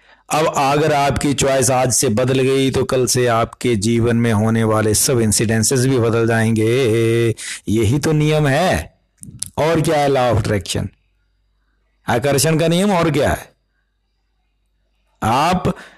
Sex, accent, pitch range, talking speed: male, native, 110-145 Hz, 145 wpm